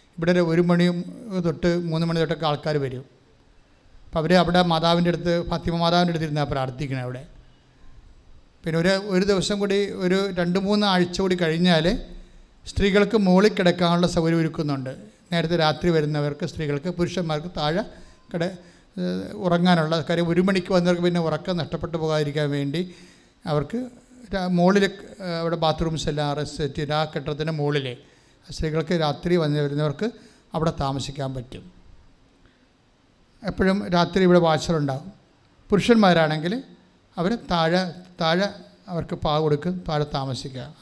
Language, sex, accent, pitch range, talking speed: English, male, Indian, 150-185 Hz, 115 wpm